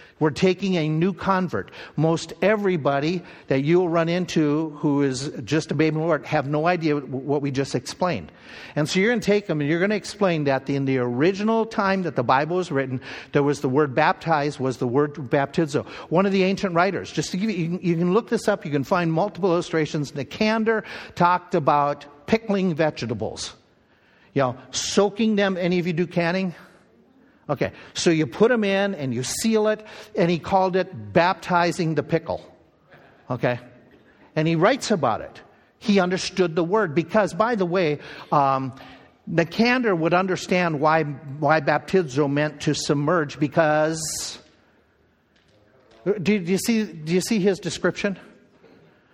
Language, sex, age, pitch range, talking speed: English, male, 50-69, 150-195 Hz, 170 wpm